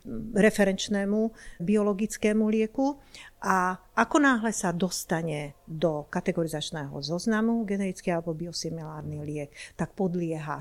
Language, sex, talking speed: Slovak, female, 95 wpm